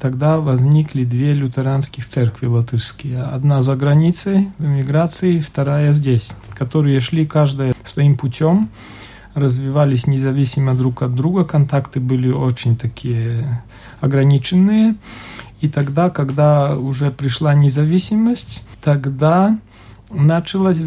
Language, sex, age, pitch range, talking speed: Russian, male, 40-59, 130-160 Hz, 105 wpm